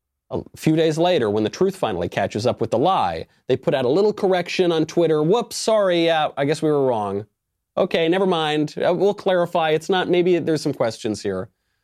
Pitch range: 105-165 Hz